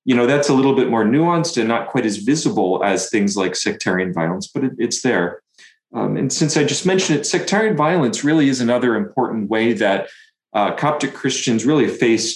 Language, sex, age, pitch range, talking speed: English, male, 40-59, 100-135 Hz, 200 wpm